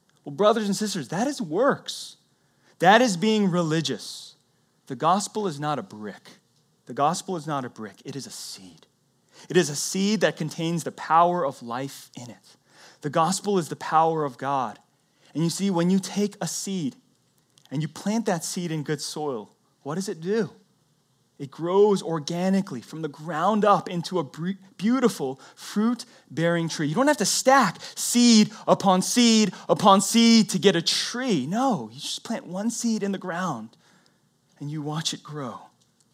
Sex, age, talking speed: male, 30-49, 180 wpm